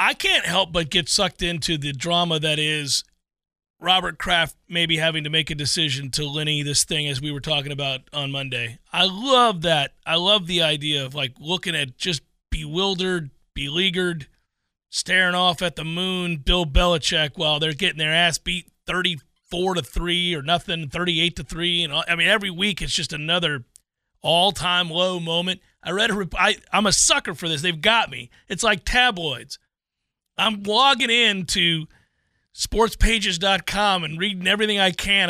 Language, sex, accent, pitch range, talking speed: English, male, American, 155-190 Hz, 180 wpm